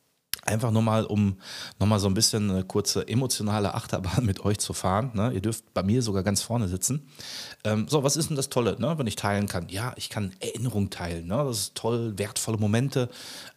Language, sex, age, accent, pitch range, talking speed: German, male, 30-49, German, 95-110 Hz, 200 wpm